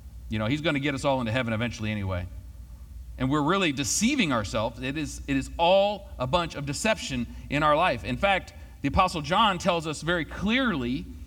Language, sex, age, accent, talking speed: English, male, 40-59, American, 200 wpm